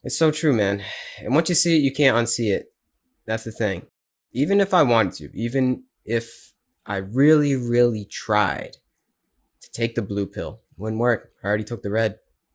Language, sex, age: English, male, 20-39